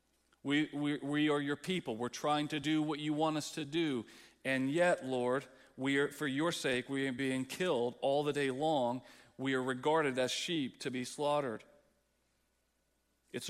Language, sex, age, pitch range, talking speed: English, male, 40-59, 130-165 Hz, 180 wpm